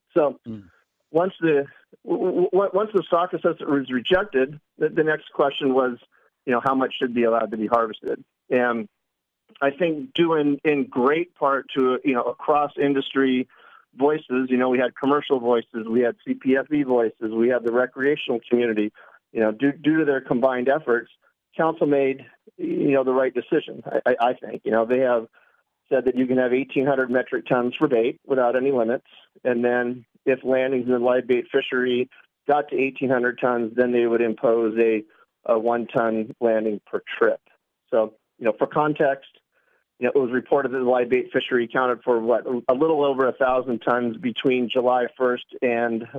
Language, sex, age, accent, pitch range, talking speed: English, male, 40-59, American, 120-140 Hz, 185 wpm